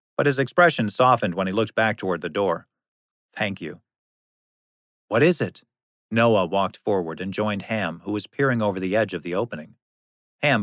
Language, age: English, 40-59